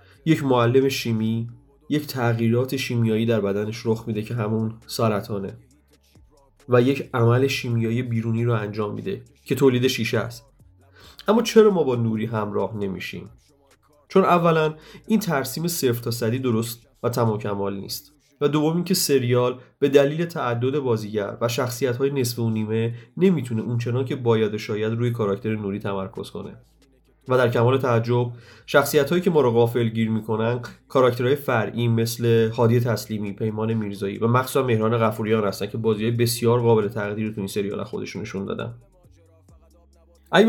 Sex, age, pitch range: male, 30-49, 110-135 Hz